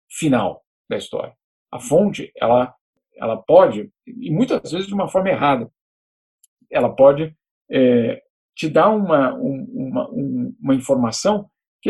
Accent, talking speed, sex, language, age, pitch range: Brazilian, 125 wpm, male, Portuguese, 50-69, 140-220 Hz